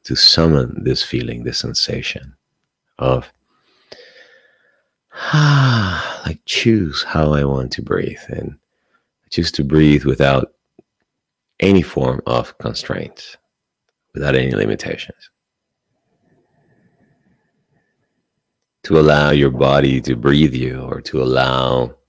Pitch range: 65-75 Hz